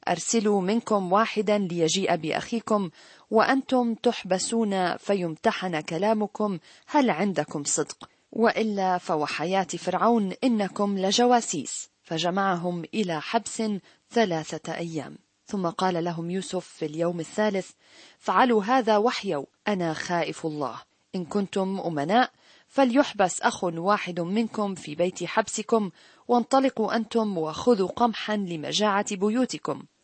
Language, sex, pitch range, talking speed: Arabic, female, 175-225 Hz, 100 wpm